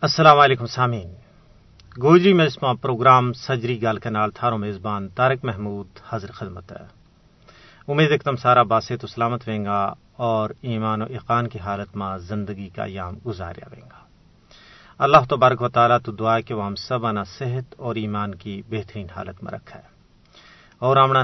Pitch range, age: 105-125 Hz, 40-59